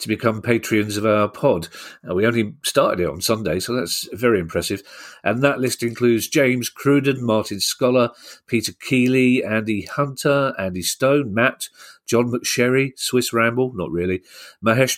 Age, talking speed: 40-59, 150 wpm